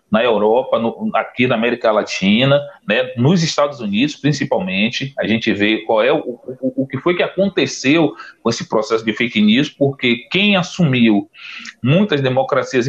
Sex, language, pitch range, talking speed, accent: male, Portuguese, 115-145 Hz, 165 wpm, Brazilian